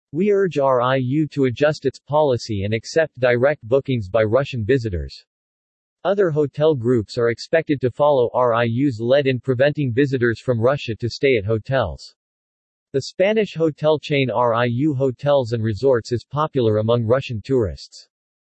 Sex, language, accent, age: male, English, American, 40-59